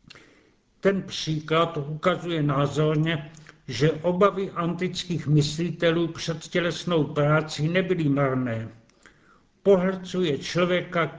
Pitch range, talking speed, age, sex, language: 150-180 Hz, 80 wpm, 70-89, male, Czech